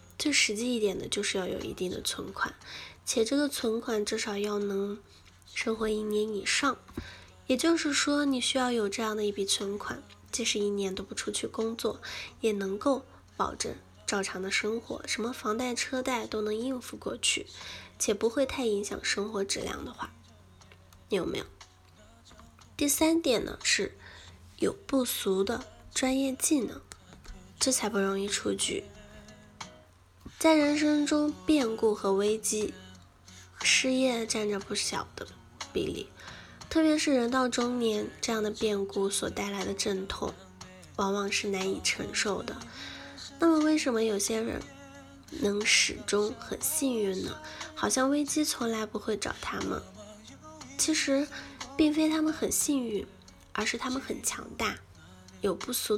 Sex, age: female, 10-29